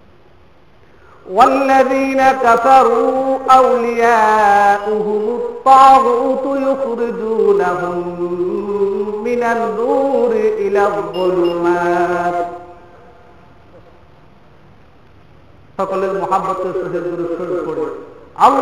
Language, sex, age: Bengali, male, 50-69